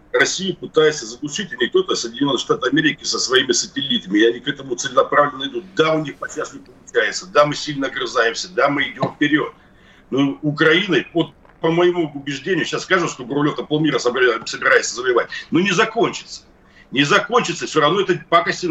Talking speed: 175 wpm